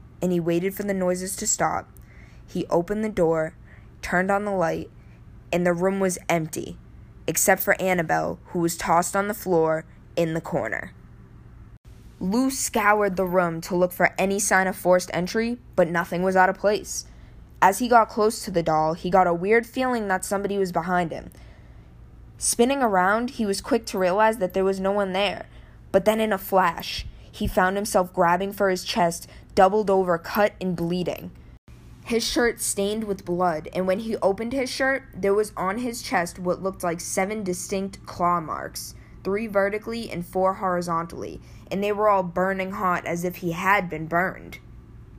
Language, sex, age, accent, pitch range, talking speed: English, female, 10-29, American, 170-200 Hz, 185 wpm